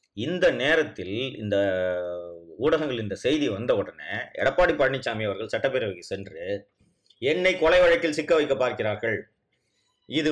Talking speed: 115 wpm